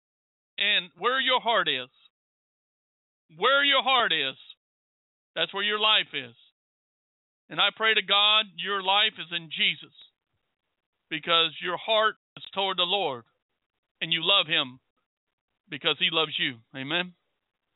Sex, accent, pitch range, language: male, American, 180-235 Hz, English